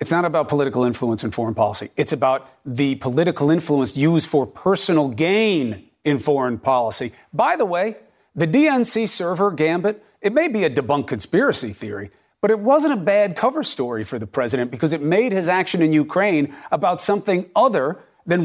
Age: 40-59